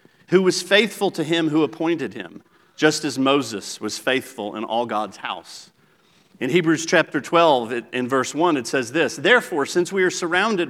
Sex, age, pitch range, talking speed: male, 40-59, 135-185 Hz, 180 wpm